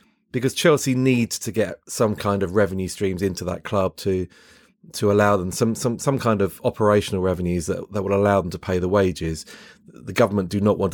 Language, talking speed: English, 210 wpm